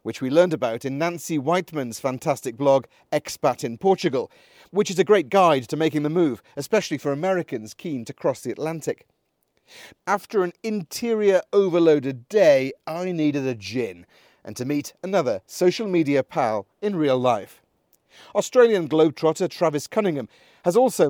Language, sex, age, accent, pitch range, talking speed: English, male, 40-59, British, 140-190 Hz, 155 wpm